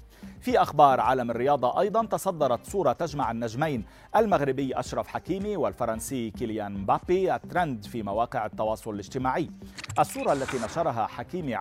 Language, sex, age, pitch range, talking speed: Arabic, male, 40-59, 115-155 Hz, 125 wpm